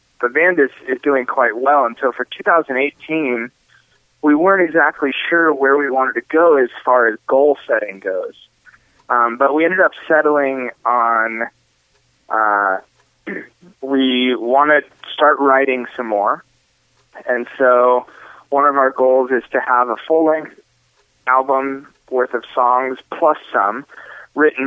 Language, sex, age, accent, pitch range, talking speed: English, male, 30-49, American, 120-140 Hz, 145 wpm